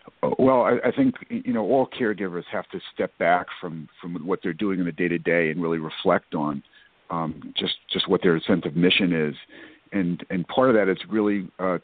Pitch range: 85-105 Hz